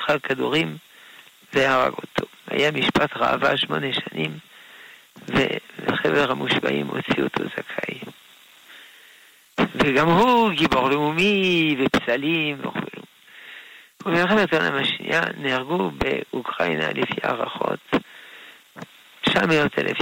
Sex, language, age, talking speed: male, Hebrew, 50-69, 85 wpm